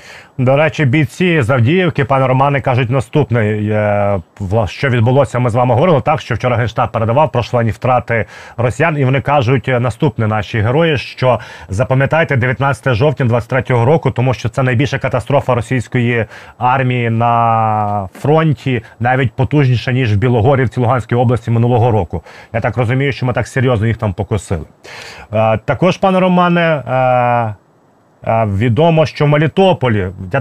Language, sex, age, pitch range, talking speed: Ukrainian, male, 30-49, 120-145 Hz, 140 wpm